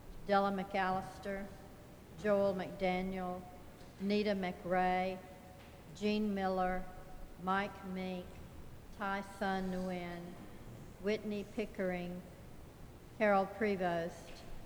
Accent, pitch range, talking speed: American, 180-200 Hz, 70 wpm